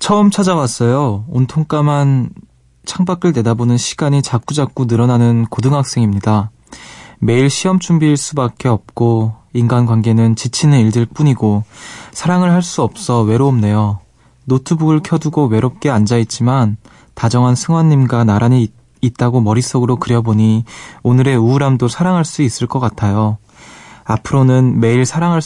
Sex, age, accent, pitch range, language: male, 20-39, native, 115-140 Hz, Korean